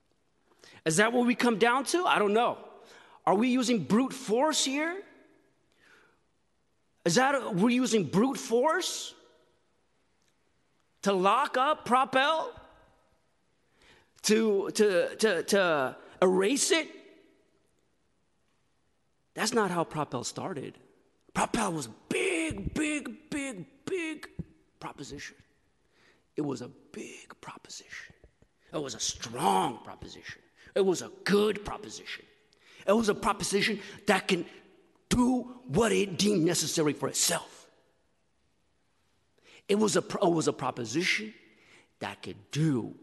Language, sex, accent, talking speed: English, male, American, 115 wpm